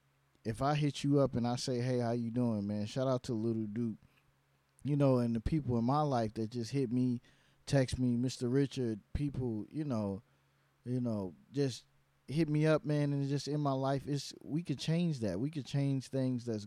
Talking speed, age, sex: 210 wpm, 20-39, male